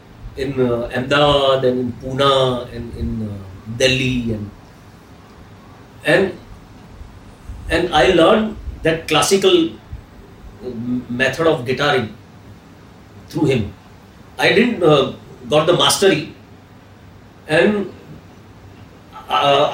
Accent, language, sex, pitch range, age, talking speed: Indian, English, male, 100-150 Hz, 40-59, 90 wpm